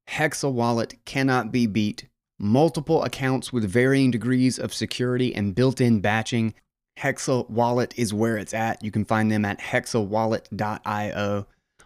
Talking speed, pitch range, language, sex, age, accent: 140 wpm, 100-120 Hz, English, male, 20-39, American